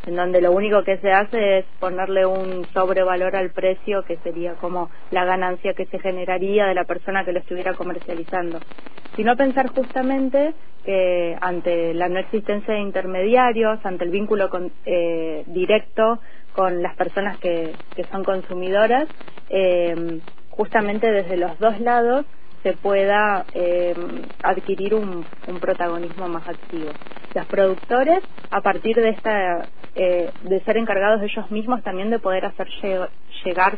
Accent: Argentinian